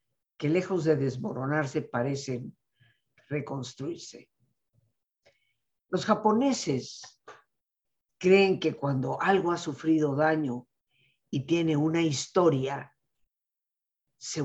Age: 50-69